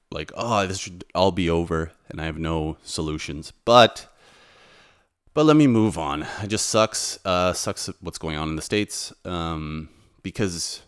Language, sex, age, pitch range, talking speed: English, male, 30-49, 85-105 Hz, 170 wpm